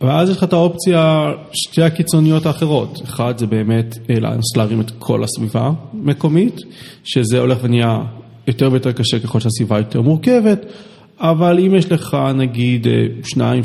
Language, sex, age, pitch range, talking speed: Hebrew, male, 30-49, 120-155 Hz, 145 wpm